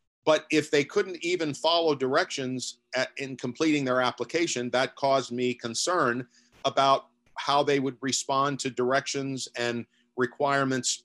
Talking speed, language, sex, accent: 130 wpm, English, male, American